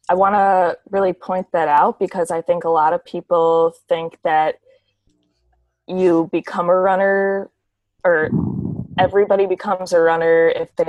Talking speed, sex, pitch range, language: 150 wpm, female, 155-185 Hz, English